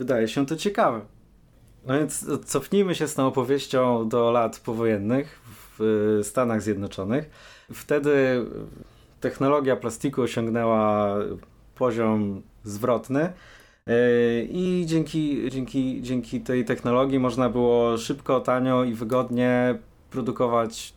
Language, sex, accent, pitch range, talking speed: Polish, male, native, 110-135 Hz, 105 wpm